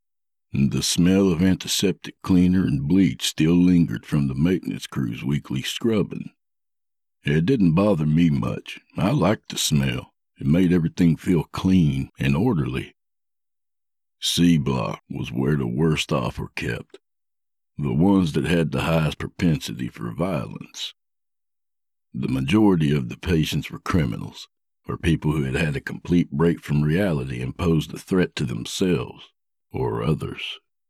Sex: male